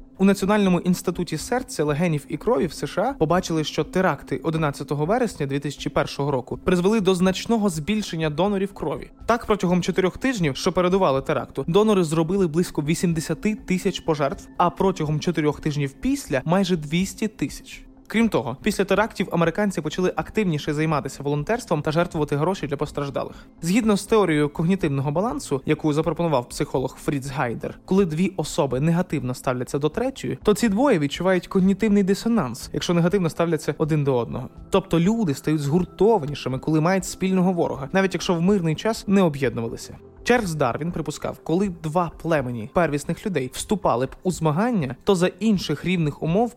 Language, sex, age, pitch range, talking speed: Ukrainian, male, 20-39, 150-195 Hz, 155 wpm